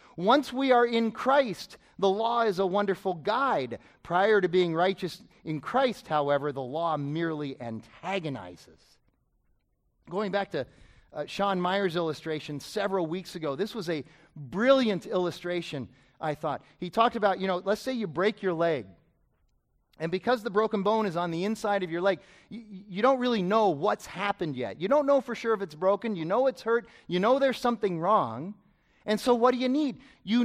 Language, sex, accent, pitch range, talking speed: English, male, American, 180-235 Hz, 185 wpm